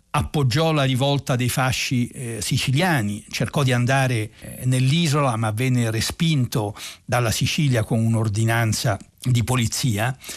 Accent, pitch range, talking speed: native, 110-140 Hz, 120 wpm